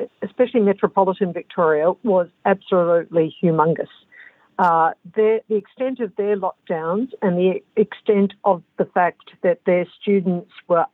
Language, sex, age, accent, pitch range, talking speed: English, female, 60-79, Australian, 170-210 Hz, 125 wpm